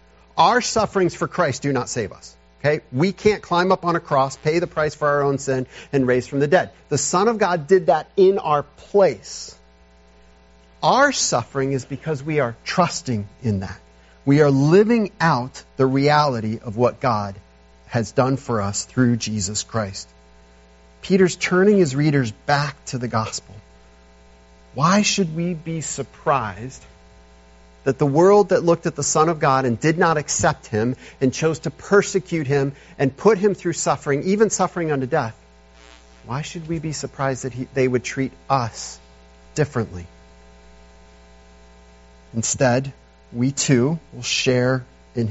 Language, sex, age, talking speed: English, male, 40-59, 160 wpm